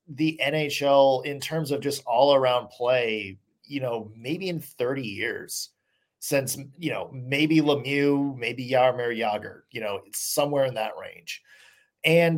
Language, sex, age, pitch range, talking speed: English, male, 30-49, 130-215 Hz, 150 wpm